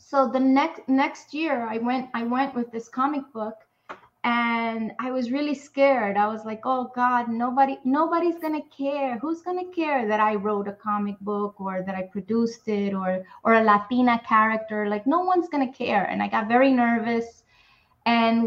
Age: 20-39